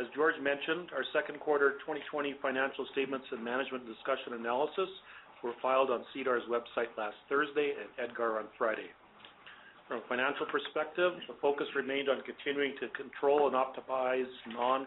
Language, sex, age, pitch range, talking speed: English, male, 40-59, 125-140 Hz, 155 wpm